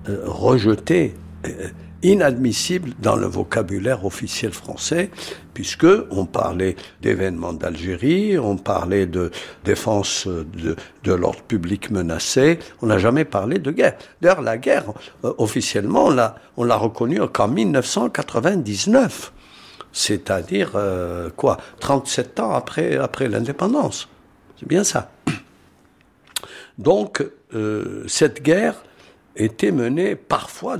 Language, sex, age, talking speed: French, male, 60-79, 115 wpm